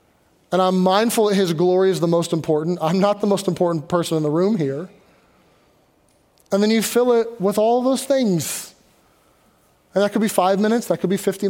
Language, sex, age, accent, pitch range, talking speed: English, male, 30-49, American, 170-215 Hz, 205 wpm